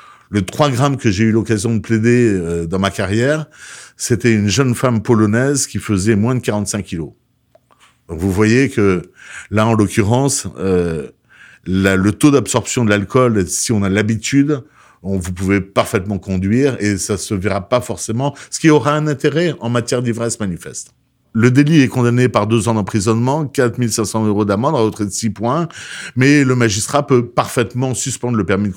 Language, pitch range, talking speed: French, 105-135 Hz, 180 wpm